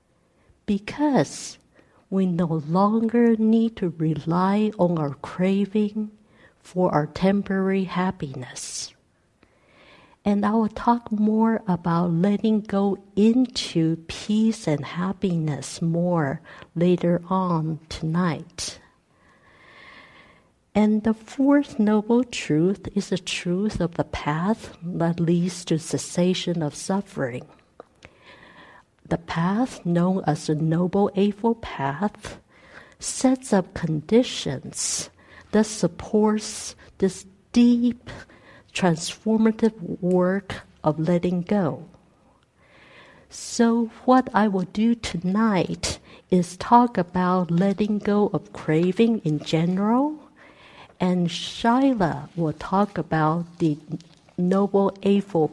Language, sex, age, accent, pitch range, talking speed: English, female, 50-69, American, 165-215 Hz, 95 wpm